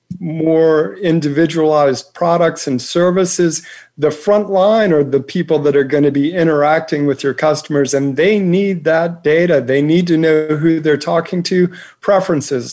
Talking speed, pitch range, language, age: 160 wpm, 145-180 Hz, English, 50-69